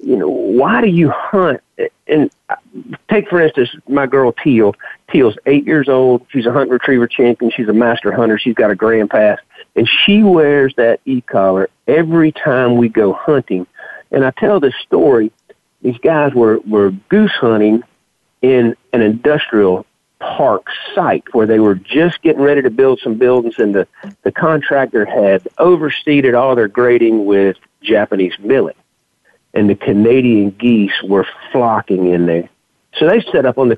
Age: 50-69